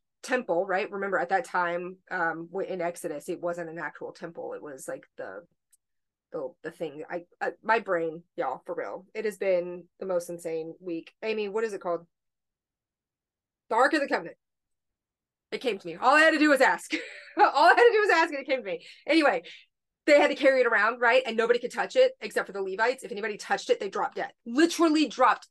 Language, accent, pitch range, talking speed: English, American, 180-265 Hz, 225 wpm